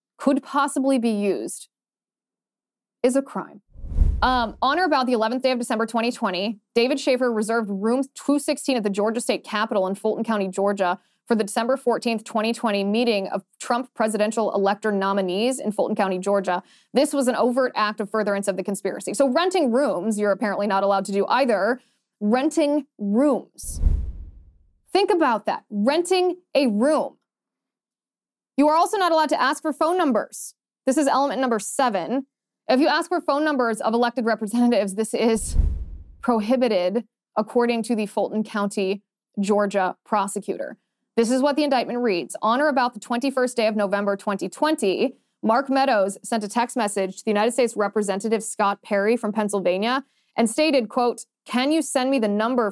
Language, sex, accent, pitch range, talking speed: English, female, American, 205-260 Hz, 165 wpm